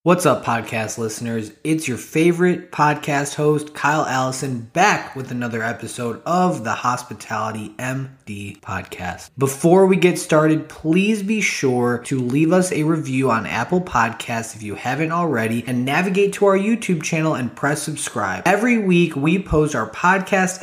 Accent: American